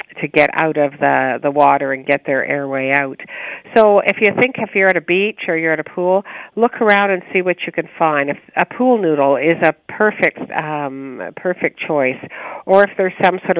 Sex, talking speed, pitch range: female, 220 wpm, 145-185 Hz